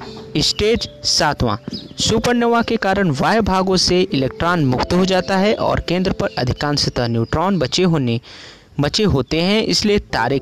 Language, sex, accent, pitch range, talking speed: Hindi, male, native, 135-195 Hz, 145 wpm